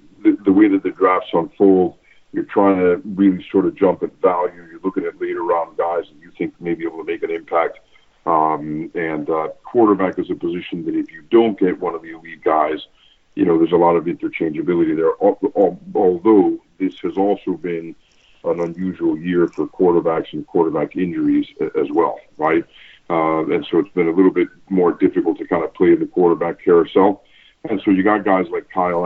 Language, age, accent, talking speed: English, 50-69, American, 200 wpm